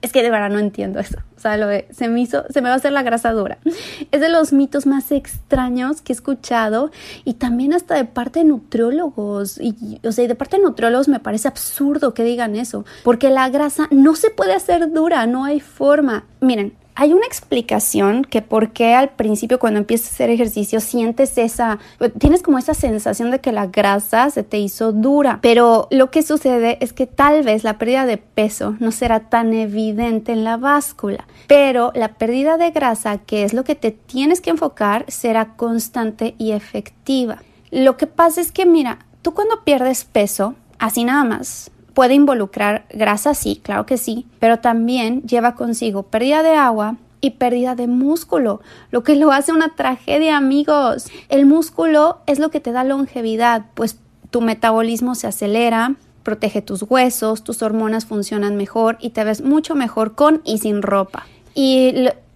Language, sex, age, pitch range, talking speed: Spanish, female, 30-49, 225-285 Hz, 185 wpm